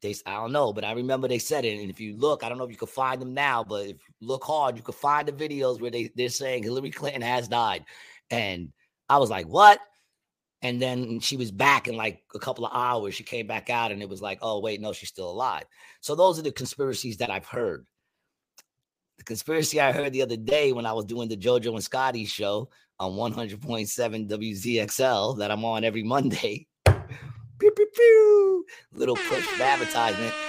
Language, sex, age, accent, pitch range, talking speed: English, male, 30-49, American, 110-135 Hz, 215 wpm